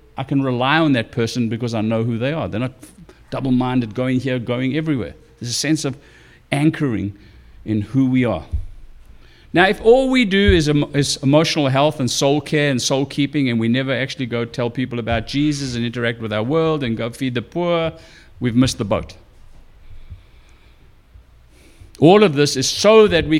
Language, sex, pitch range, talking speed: English, male, 110-150 Hz, 185 wpm